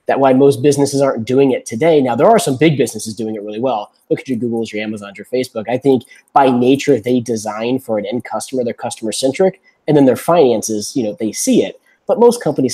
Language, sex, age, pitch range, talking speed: English, male, 20-39, 110-140 Hz, 235 wpm